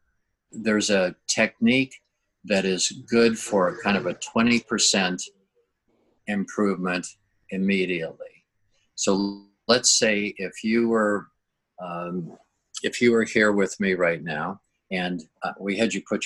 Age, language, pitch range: 50-69, English, 95-110 Hz